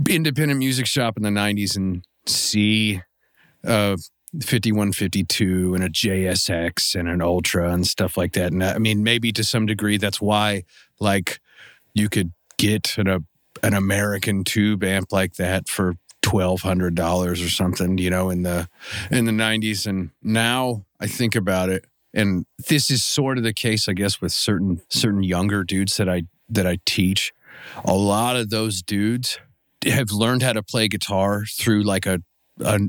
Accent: American